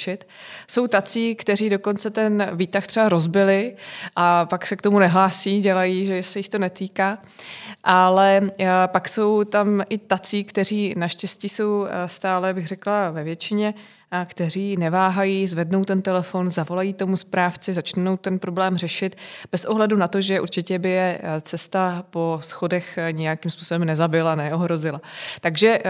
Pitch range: 170-195 Hz